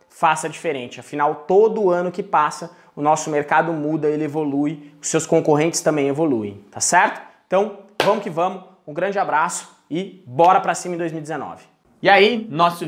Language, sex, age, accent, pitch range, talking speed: Portuguese, male, 20-39, Brazilian, 150-195 Hz, 170 wpm